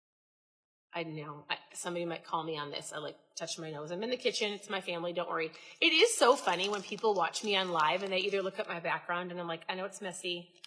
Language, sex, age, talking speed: English, female, 30-49, 260 wpm